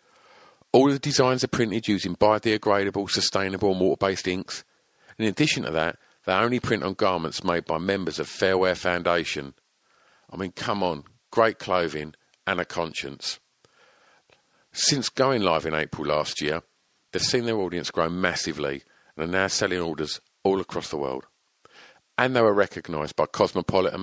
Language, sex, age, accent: English, male, 50-69, British